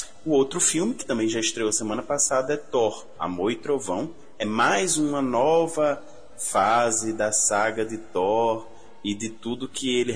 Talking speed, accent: 165 wpm, Brazilian